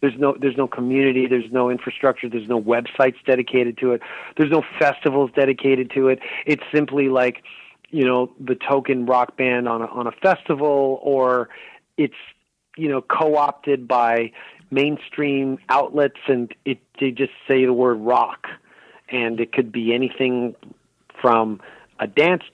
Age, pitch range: 40-59, 125-155 Hz